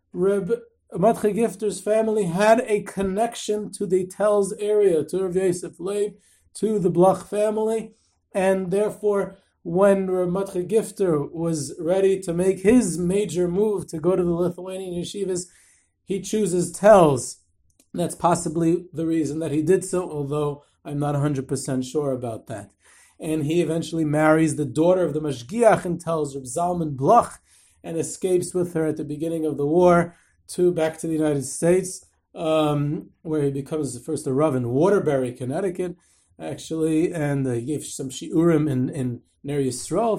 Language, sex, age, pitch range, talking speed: English, male, 30-49, 145-190 Hz, 155 wpm